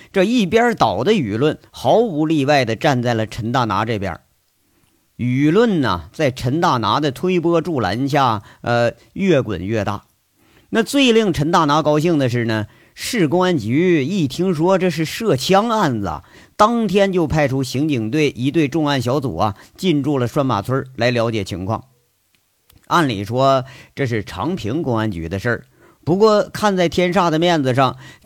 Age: 50-69